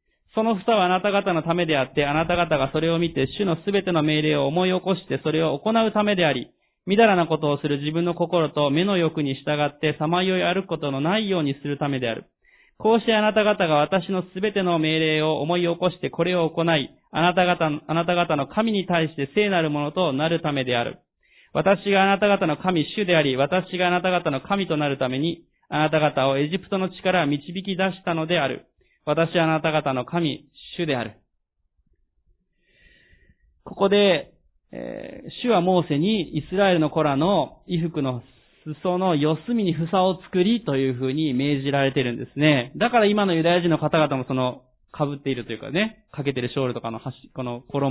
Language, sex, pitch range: Japanese, male, 140-185 Hz